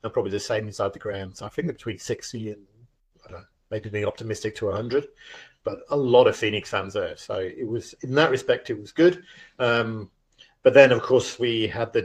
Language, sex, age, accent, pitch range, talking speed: English, male, 40-59, British, 105-125 Hz, 220 wpm